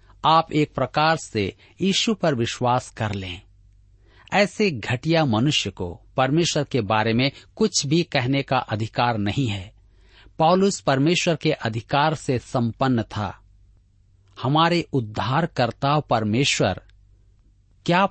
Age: 50-69